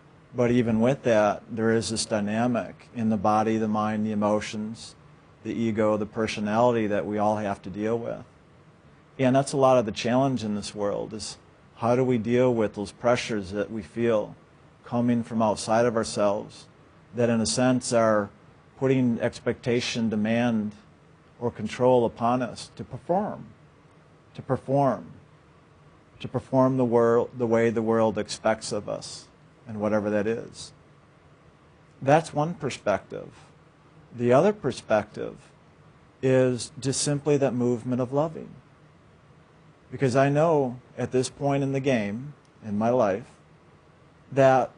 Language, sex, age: English, male, 50-69